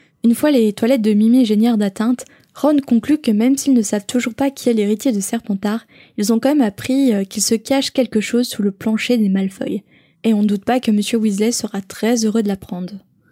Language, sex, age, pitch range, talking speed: French, female, 10-29, 205-235 Hz, 225 wpm